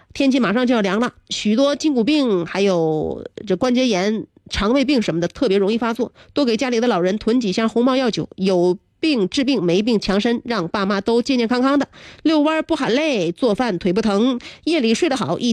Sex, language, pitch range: female, Chinese, 200-255 Hz